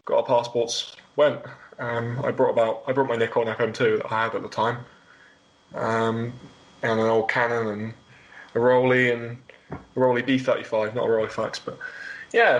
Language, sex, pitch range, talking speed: English, male, 115-135 Hz, 175 wpm